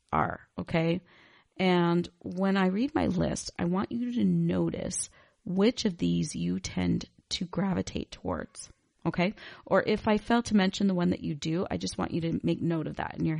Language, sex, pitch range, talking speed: English, female, 155-195 Hz, 195 wpm